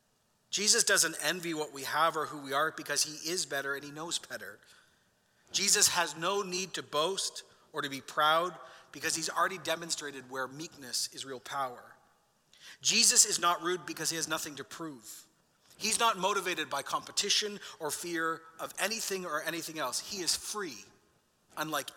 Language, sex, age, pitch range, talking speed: English, male, 40-59, 150-185 Hz, 170 wpm